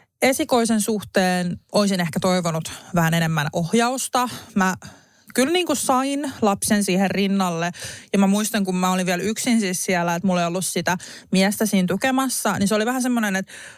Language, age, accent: Finnish, 30-49, native